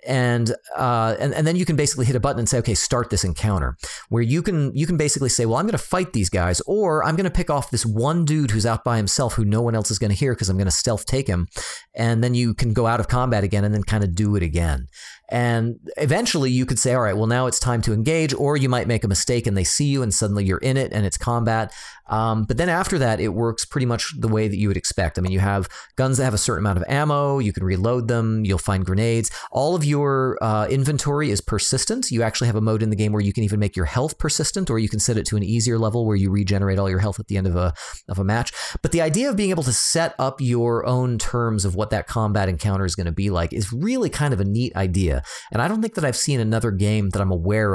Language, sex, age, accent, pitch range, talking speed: English, male, 40-59, American, 100-130 Hz, 285 wpm